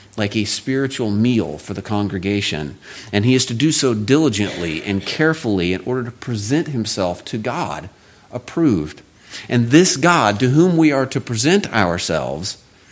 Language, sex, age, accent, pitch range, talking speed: English, male, 40-59, American, 95-125 Hz, 160 wpm